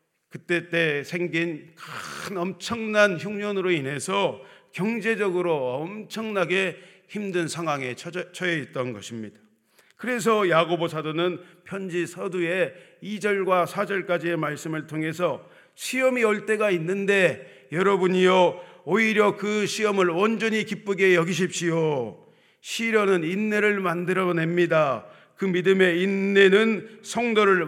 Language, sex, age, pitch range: Korean, male, 40-59, 160-205 Hz